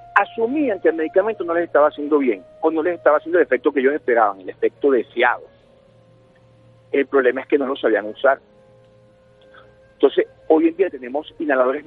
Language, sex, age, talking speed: Spanish, male, 50-69, 180 wpm